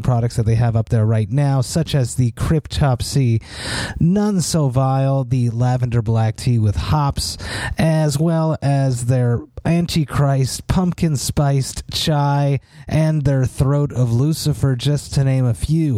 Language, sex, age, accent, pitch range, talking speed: English, male, 30-49, American, 115-140 Hz, 145 wpm